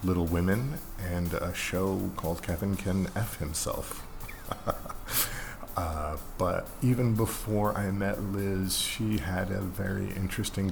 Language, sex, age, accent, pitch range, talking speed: English, male, 40-59, American, 85-105 Hz, 125 wpm